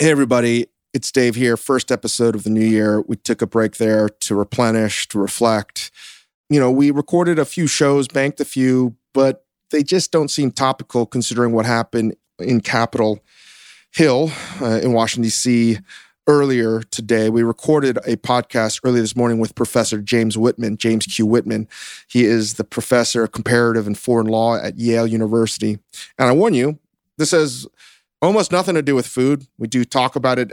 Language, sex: English, male